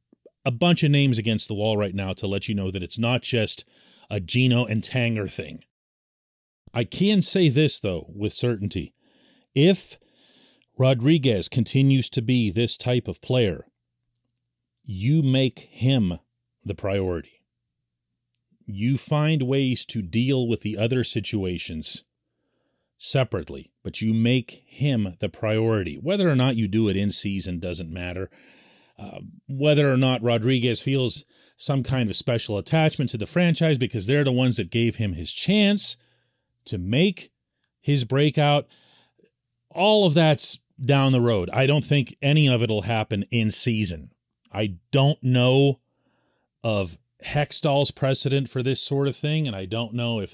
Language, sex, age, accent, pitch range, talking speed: English, male, 40-59, American, 105-135 Hz, 150 wpm